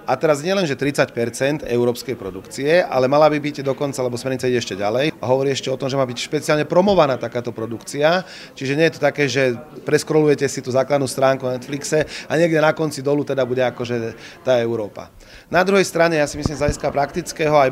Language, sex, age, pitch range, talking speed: Slovak, male, 30-49, 130-155 Hz, 215 wpm